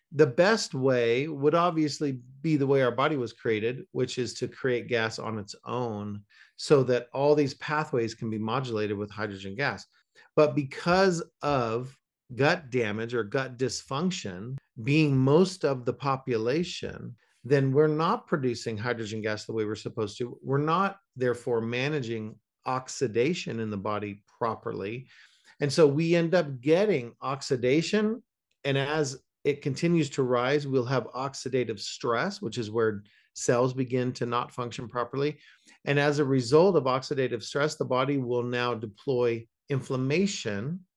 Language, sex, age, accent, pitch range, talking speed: English, male, 40-59, American, 120-150 Hz, 150 wpm